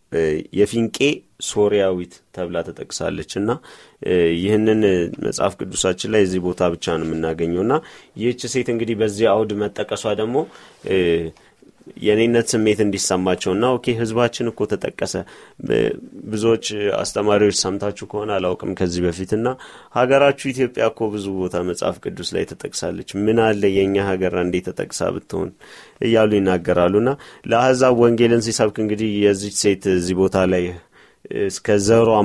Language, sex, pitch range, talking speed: Amharic, male, 90-110 Hz, 110 wpm